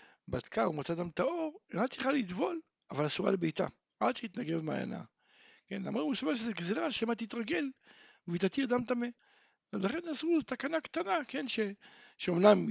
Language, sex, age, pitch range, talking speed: Hebrew, male, 60-79, 180-265 Hz, 165 wpm